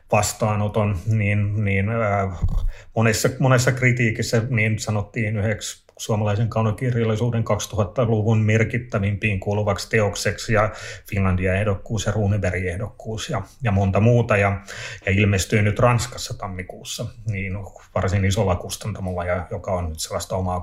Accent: native